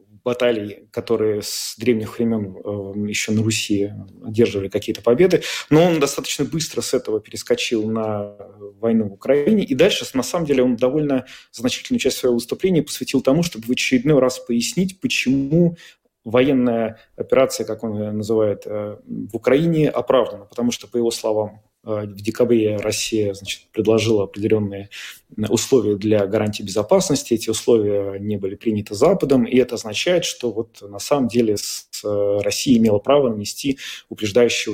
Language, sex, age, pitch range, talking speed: Russian, male, 30-49, 110-135 Hz, 140 wpm